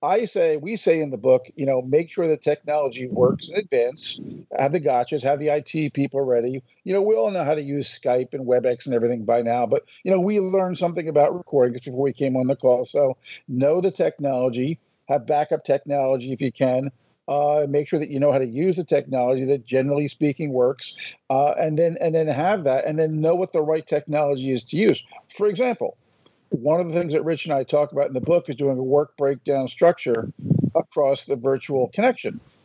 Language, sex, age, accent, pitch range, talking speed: English, male, 50-69, American, 135-165 Hz, 220 wpm